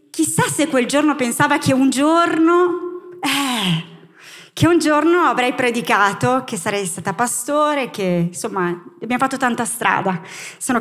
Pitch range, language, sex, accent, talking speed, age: 200-250 Hz, Italian, female, native, 140 wpm, 20-39